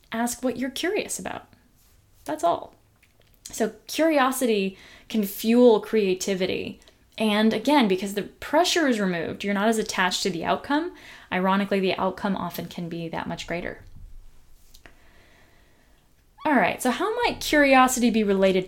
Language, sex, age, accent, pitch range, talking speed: English, female, 10-29, American, 180-230 Hz, 140 wpm